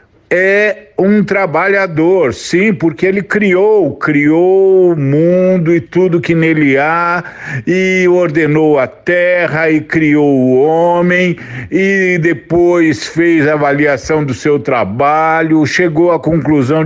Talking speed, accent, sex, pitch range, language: 120 wpm, Brazilian, male, 155-200 Hz, Portuguese